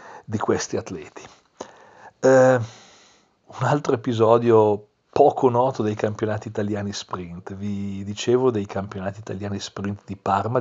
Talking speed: 120 wpm